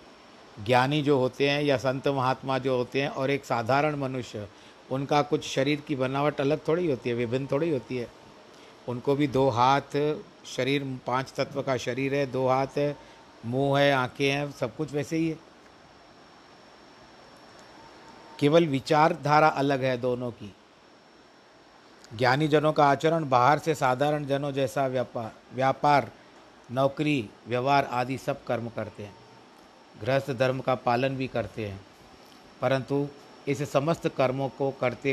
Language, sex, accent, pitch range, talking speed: Hindi, male, native, 125-150 Hz, 145 wpm